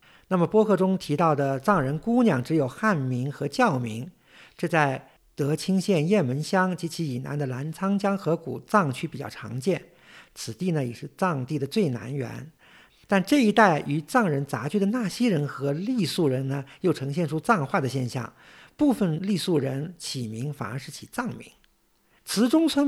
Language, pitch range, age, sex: Chinese, 135-195 Hz, 50-69, male